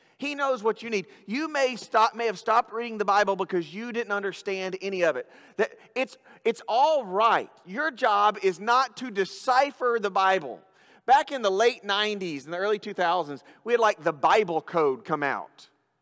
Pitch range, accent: 190-285 Hz, American